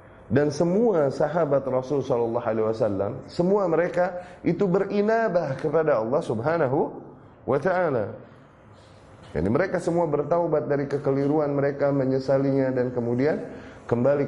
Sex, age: male, 30-49